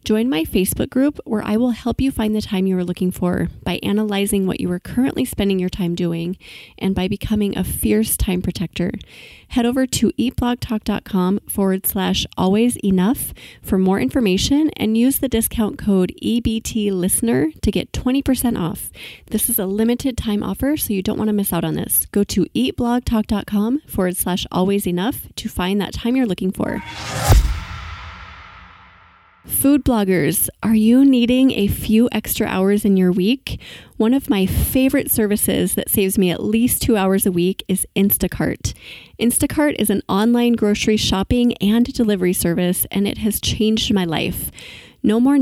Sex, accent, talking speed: female, American, 170 wpm